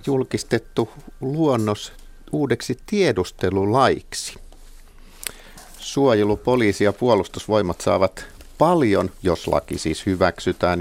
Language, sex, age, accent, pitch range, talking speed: Finnish, male, 50-69, native, 90-120 Hz, 70 wpm